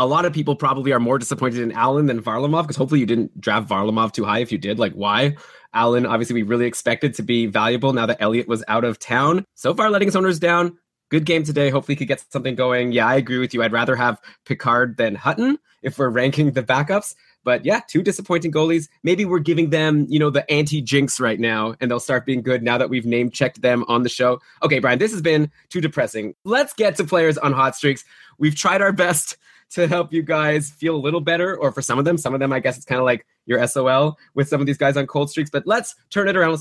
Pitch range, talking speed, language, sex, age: 130-170 Hz, 255 wpm, English, male, 20-39